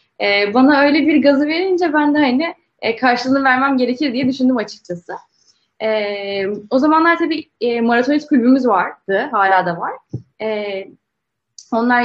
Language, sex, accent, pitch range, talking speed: Turkish, female, native, 200-260 Hz, 120 wpm